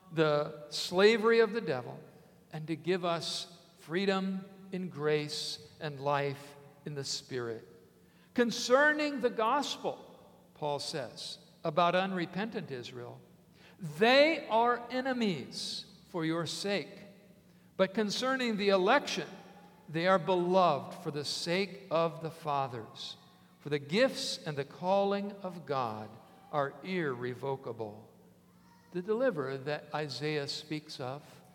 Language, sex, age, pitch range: English, male, 50-69, 150-195 Hz